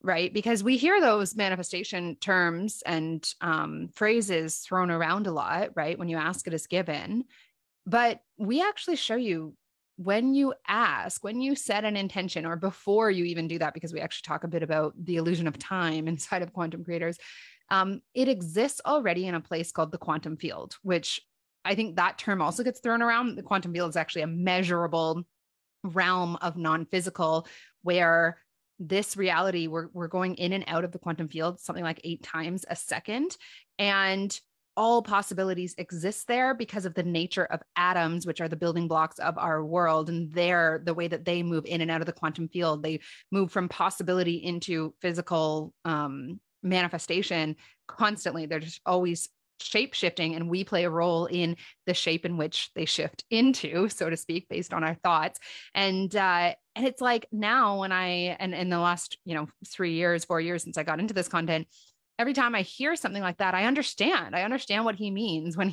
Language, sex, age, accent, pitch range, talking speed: English, female, 20-39, American, 165-200 Hz, 190 wpm